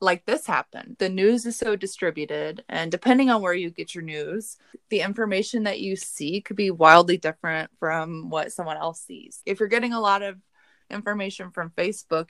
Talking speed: 190 wpm